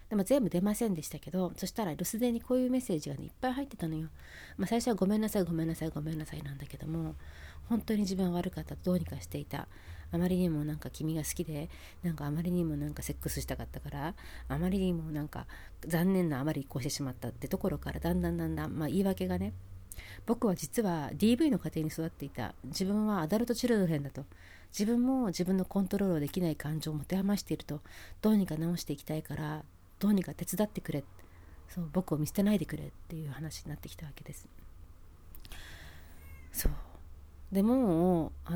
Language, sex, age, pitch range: Japanese, female, 40-59, 140-195 Hz